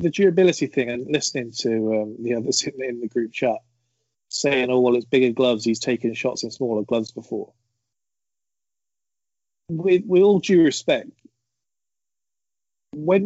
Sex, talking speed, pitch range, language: male, 145 wpm, 115-135 Hz, English